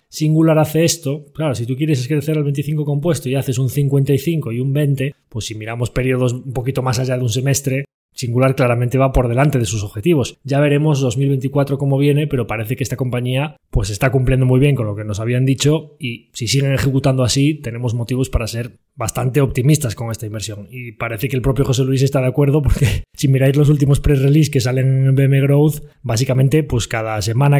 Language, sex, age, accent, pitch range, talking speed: Spanish, male, 20-39, Spanish, 120-135 Hz, 215 wpm